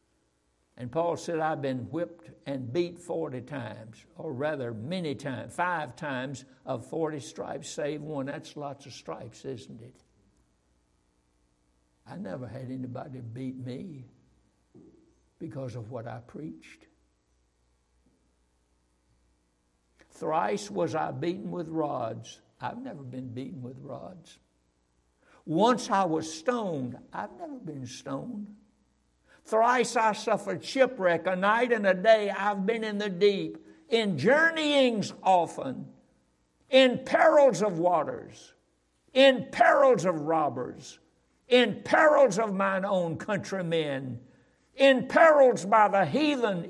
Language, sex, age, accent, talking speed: English, male, 60-79, American, 120 wpm